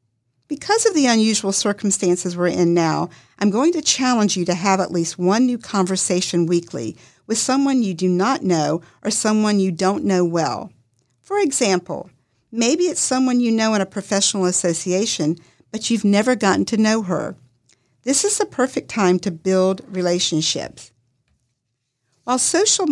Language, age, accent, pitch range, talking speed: English, 50-69, American, 165-230 Hz, 160 wpm